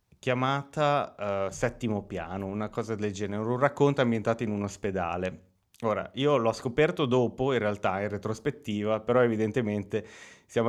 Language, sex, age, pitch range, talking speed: Italian, male, 30-49, 105-125 Hz, 145 wpm